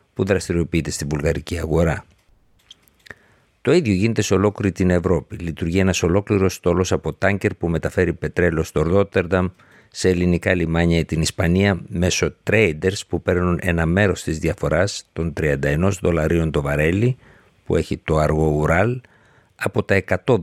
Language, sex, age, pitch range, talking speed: Greek, male, 60-79, 80-100 Hz, 145 wpm